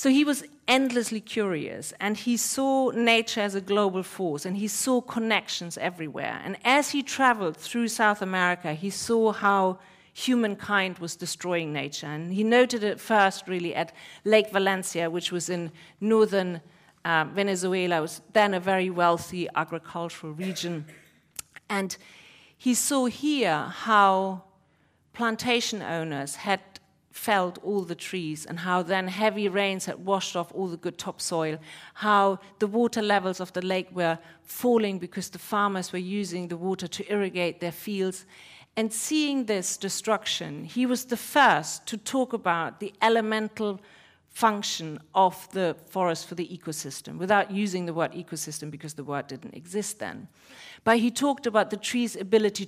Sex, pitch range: female, 170-215 Hz